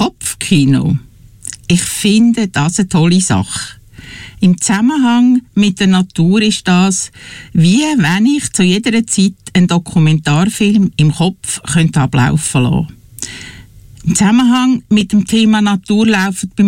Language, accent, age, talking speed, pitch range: English, Austrian, 60-79, 125 wpm, 145-220 Hz